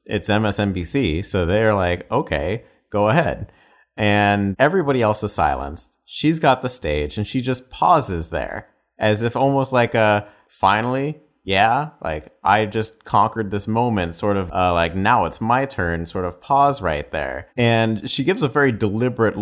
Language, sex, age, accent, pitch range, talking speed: English, male, 30-49, American, 95-120 Hz, 165 wpm